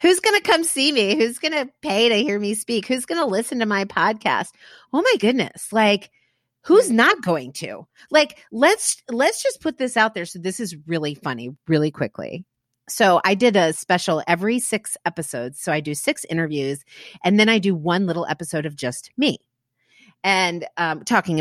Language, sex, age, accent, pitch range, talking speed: English, female, 40-59, American, 170-245 Hz, 195 wpm